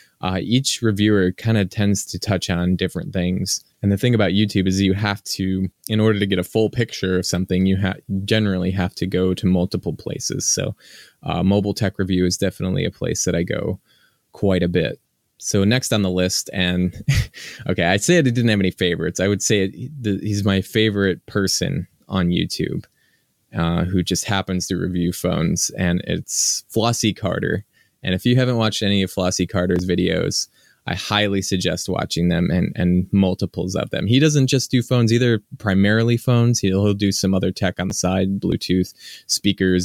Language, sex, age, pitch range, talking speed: English, male, 20-39, 90-105 Hz, 185 wpm